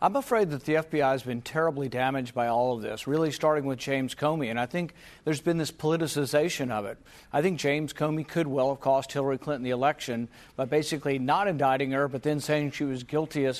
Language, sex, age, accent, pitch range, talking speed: English, male, 50-69, American, 135-160 Hz, 225 wpm